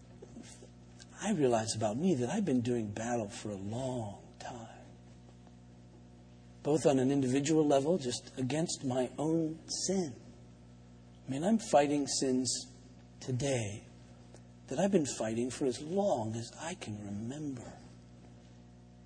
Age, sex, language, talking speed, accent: 50-69, male, English, 125 wpm, American